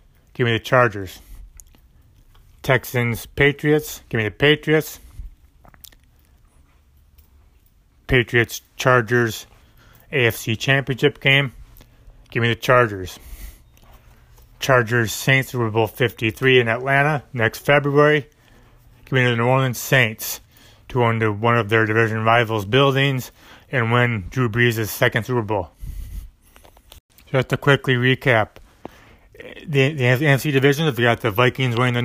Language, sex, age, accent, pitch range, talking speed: English, male, 30-49, American, 110-130 Hz, 115 wpm